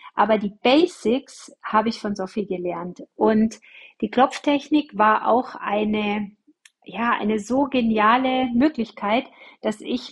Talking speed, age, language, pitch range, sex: 120 wpm, 40-59, German, 215-265 Hz, female